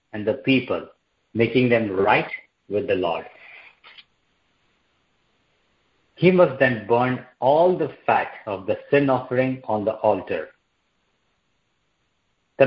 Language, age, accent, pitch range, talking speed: English, 50-69, Indian, 110-140 Hz, 115 wpm